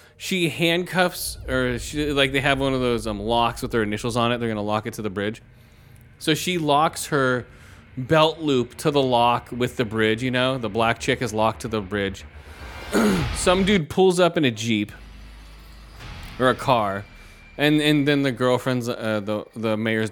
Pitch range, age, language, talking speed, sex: 110-140 Hz, 30-49, English, 195 wpm, male